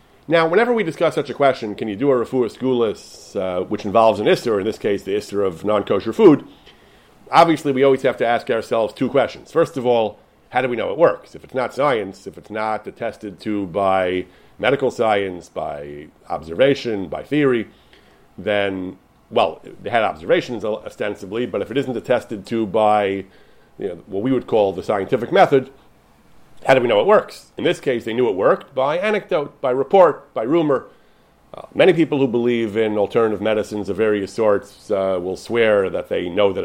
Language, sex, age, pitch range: English, male, 40-59, 105-135 Hz